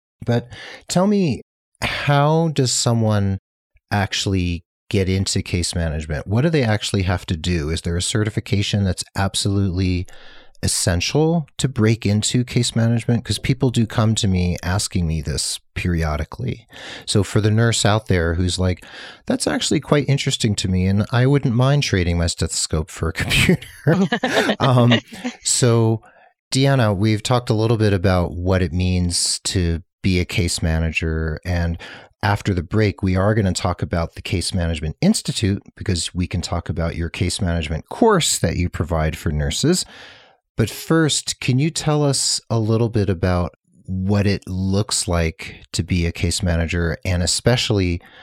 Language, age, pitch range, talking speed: English, 40-59, 90-120 Hz, 160 wpm